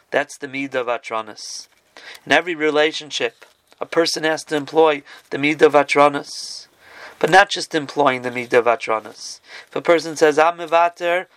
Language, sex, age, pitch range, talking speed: Italian, male, 40-59, 140-165 Hz, 150 wpm